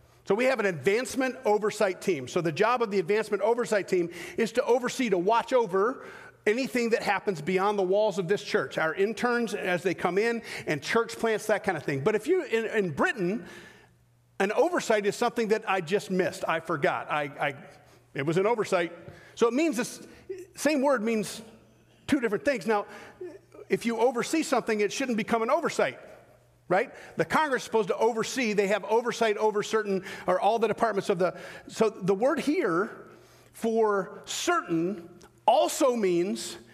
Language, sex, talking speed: English, male, 180 wpm